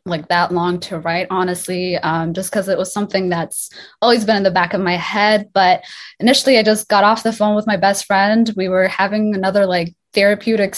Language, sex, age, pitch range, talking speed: English, female, 20-39, 175-215 Hz, 215 wpm